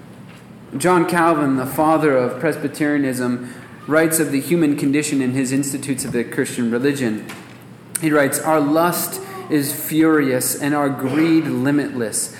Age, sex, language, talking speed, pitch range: 30-49, male, English, 135 wpm, 130-165 Hz